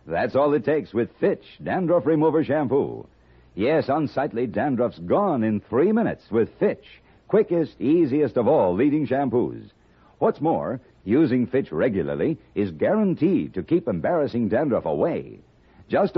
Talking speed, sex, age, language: 135 wpm, male, 60-79, English